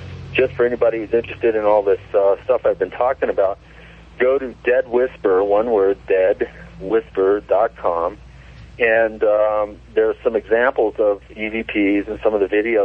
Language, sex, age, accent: English, male, 40-59, American